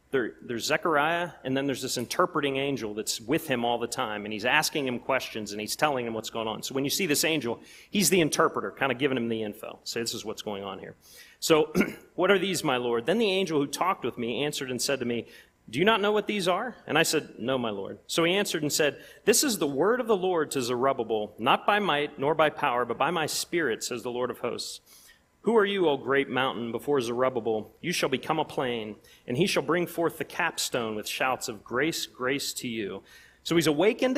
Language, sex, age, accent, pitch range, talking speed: English, male, 30-49, American, 120-165 Hz, 240 wpm